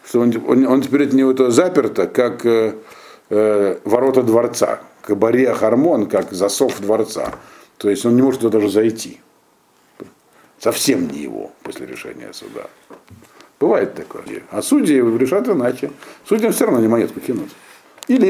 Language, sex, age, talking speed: Russian, male, 50-69, 145 wpm